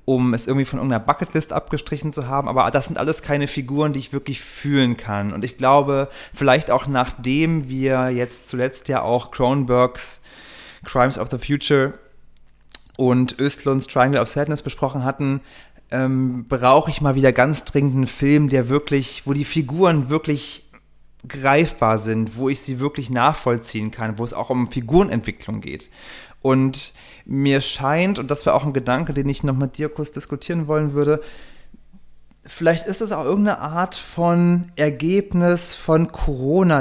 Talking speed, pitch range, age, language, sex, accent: 165 wpm, 125-150 Hz, 30-49, German, male, German